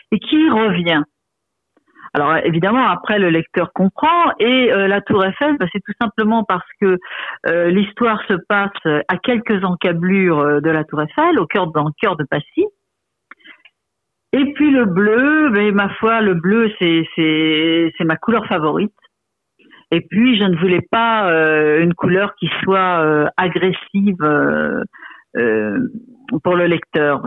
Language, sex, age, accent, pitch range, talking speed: French, female, 50-69, French, 170-225 Hz, 160 wpm